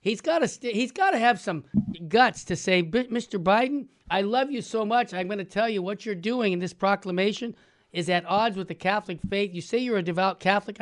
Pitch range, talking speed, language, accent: 190-250 Hz, 245 wpm, English, American